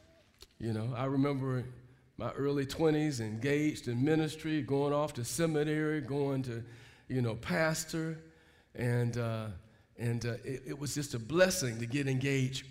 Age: 50-69